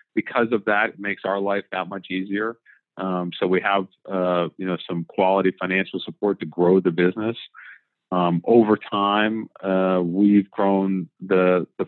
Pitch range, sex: 95-110 Hz, male